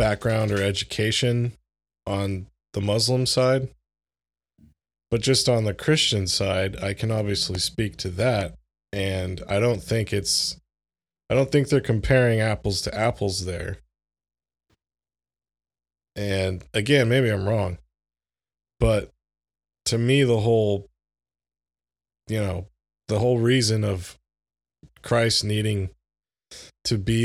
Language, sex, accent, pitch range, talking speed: English, male, American, 85-115 Hz, 115 wpm